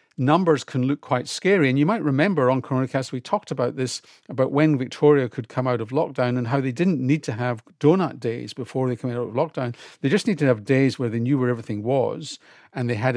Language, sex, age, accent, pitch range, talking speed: English, male, 50-69, British, 115-140 Hz, 240 wpm